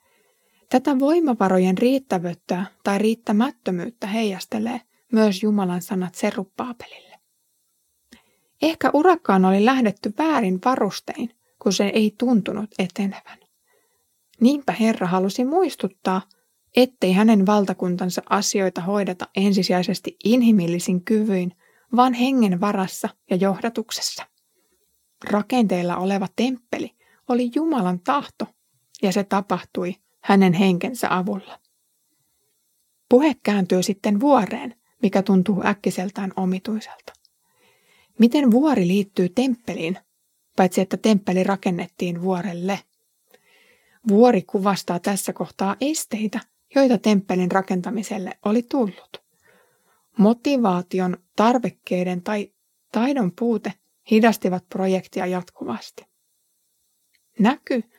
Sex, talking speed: female, 90 wpm